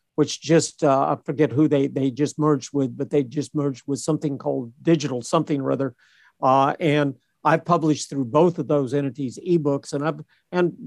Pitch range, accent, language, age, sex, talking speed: 140-165 Hz, American, English, 50-69, male, 190 wpm